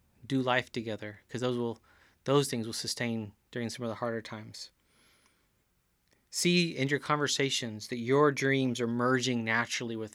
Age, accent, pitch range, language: 20-39, American, 115-135 Hz, English